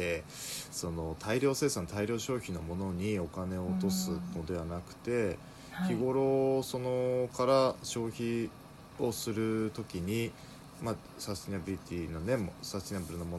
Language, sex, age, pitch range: Japanese, male, 20-39, 85-130 Hz